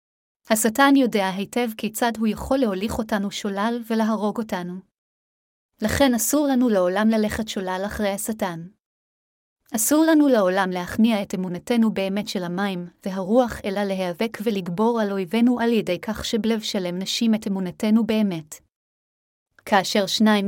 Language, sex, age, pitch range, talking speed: Hebrew, female, 30-49, 200-230 Hz, 130 wpm